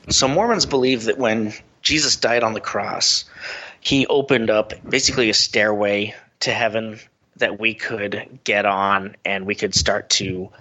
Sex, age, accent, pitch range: male, 30-49, American, 100-115 Hz